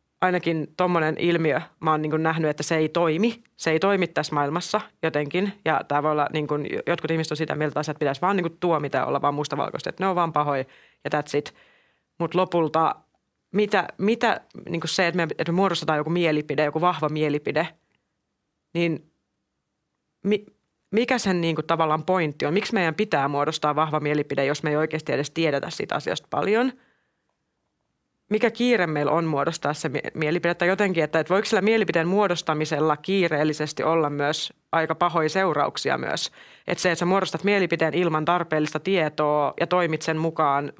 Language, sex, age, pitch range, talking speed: Finnish, female, 30-49, 150-175 Hz, 170 wpm